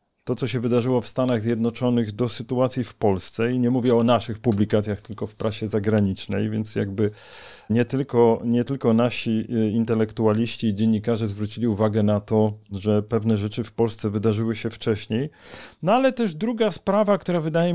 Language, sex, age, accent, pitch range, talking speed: Polish, male, 40-59, native, 115-145 Hz, 165 wpm